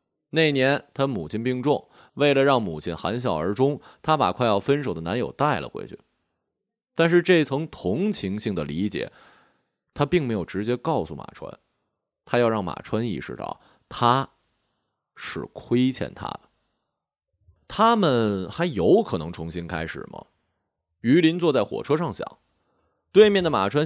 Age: 30-49